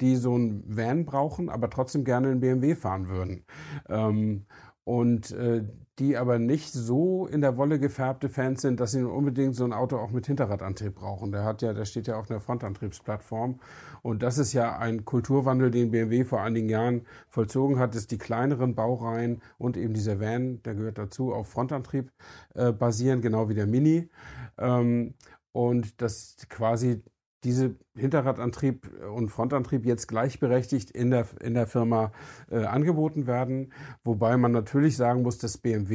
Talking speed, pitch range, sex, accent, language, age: 165 wpm, 110-130 Hz, male, German, German, 50-69